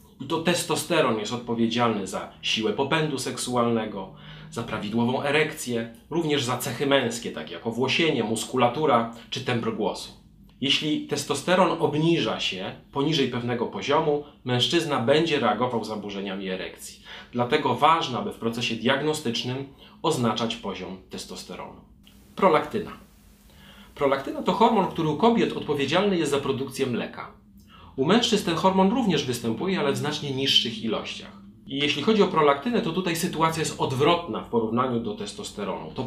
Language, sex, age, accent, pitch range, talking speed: Polish, male, 40-59, native, 115-160 Hz, 135 wpm